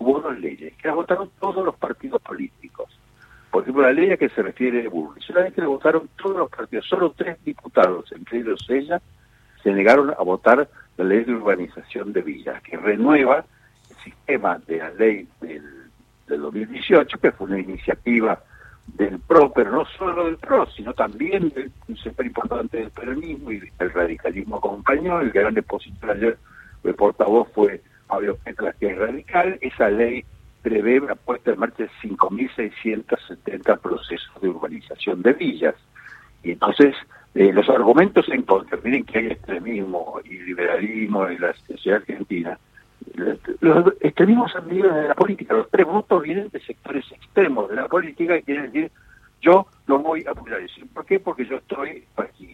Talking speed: 170 wpm